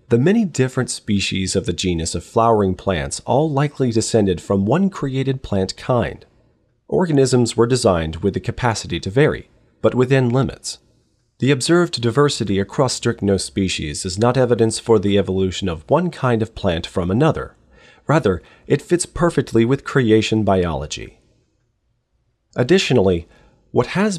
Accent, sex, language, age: American, male, English, 40-59